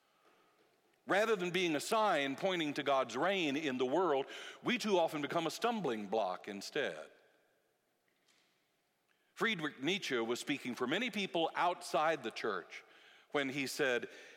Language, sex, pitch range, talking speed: English, male, 135-210 Hz, 140 wpm